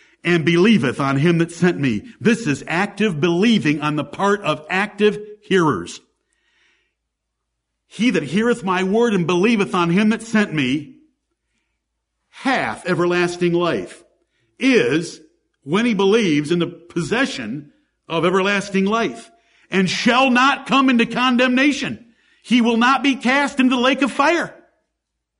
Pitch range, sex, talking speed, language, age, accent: 190-270 Hz, male, 135 wpm, English, 50-69, American